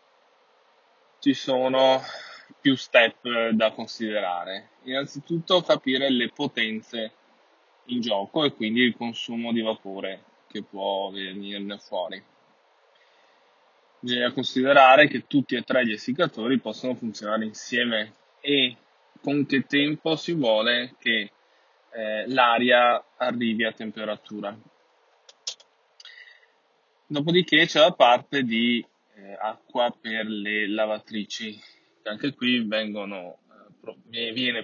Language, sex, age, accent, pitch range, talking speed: Italian, male, 10-29, native, 110-145 Hz, 100 wpm